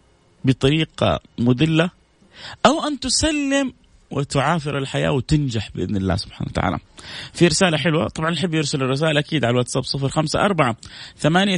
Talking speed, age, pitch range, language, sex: 135 wpm, 30-49, 120-165 Hz, Arabic, male